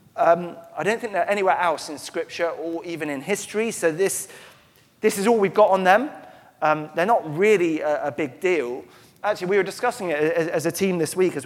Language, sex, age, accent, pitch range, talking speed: English, male, 30-49, British, 155-205 Hz, 220 wpm